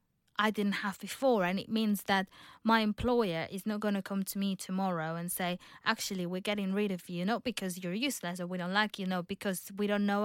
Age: 20-39